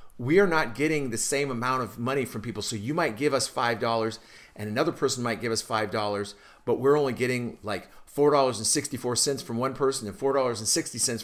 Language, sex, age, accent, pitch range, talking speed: English, male, 50-69, American, 110-145 Hz, 185 wpm